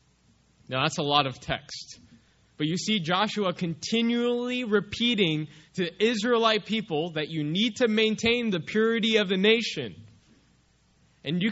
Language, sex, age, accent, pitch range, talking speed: English, male, 20-39, American, 145-225 Hz, 140 wpm